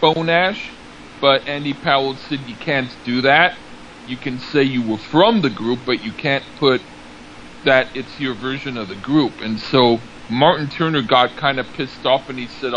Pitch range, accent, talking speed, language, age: 115-140 Hz, American, 190 wpm, English, 40-59